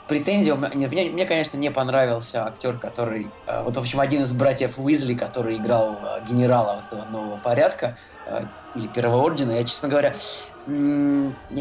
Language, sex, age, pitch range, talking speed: Russian, male, 20-39, 125-155 Hz, 150 wpm